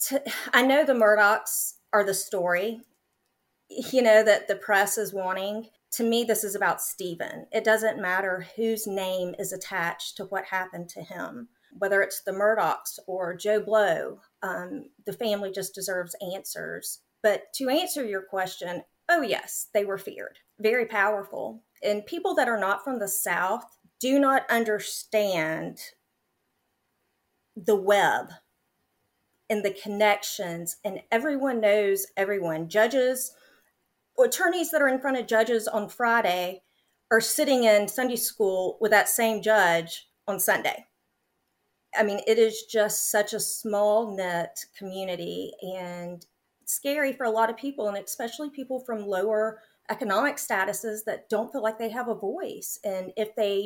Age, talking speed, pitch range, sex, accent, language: 30-49, 150 wpm, 195-230 Hz, female, American, English